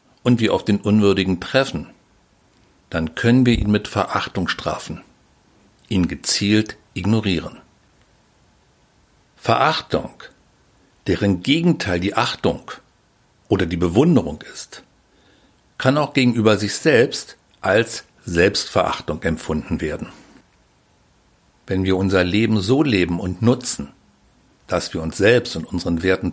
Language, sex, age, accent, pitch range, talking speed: German, male, 60-79, German, 90-115 Hz, 110 wpm